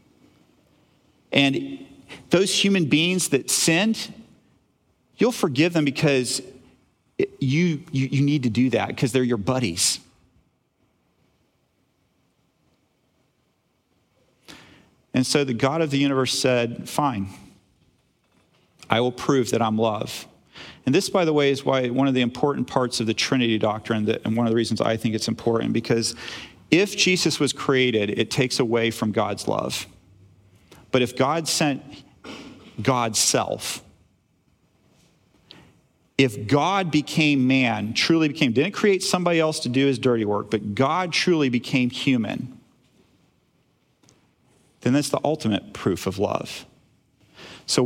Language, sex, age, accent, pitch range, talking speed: English, male, 40-59, American, 120-150 Hz, 135 wpm